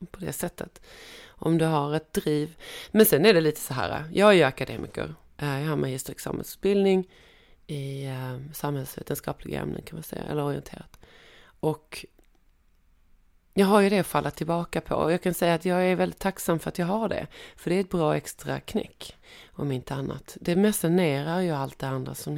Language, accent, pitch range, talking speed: English, Swedish, 140-185 Hz, 185 wpm